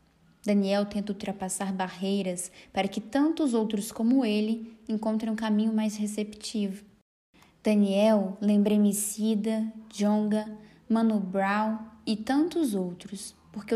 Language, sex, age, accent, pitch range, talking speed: Portuguese, female, 10-29, Brazilian, 205-230 Hz, 115 wpm